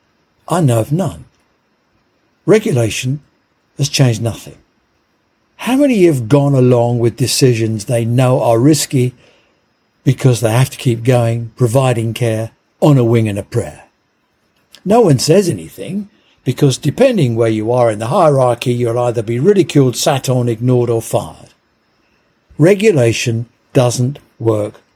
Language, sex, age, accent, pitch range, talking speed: English, male, 60-79, British, 115-150 Hz, 135 wpm